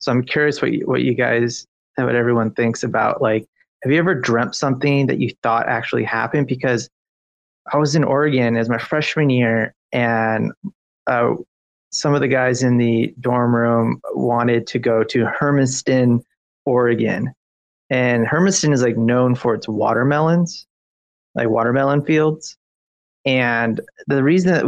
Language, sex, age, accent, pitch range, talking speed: English, male, 30-49, American, 115-140 Hz, 155 wpm